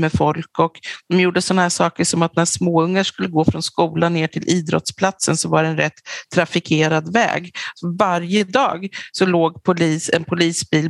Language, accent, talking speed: English, Swedish, 180 wpm